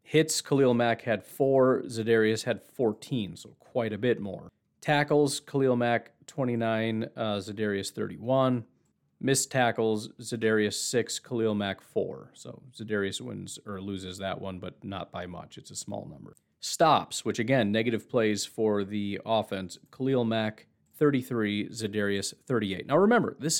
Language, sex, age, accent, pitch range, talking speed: English, male, 40-59, American, 105-135 Hz, 145 wpm